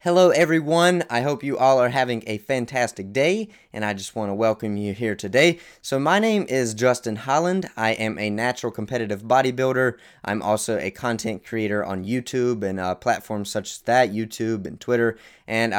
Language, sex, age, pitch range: English, male, 20-39, 105-130 Hz